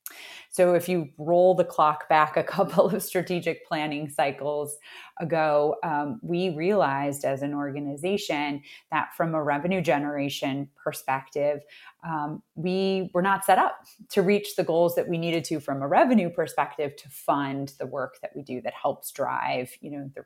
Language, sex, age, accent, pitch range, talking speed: English, female, 20-39, American, 140-175 Hz, 165 wpm